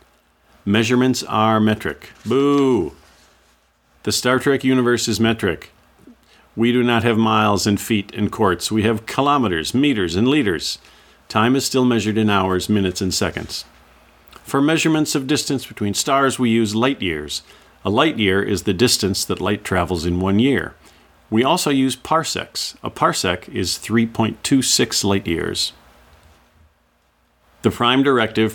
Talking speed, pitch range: 145 wpm, 90-120 Hz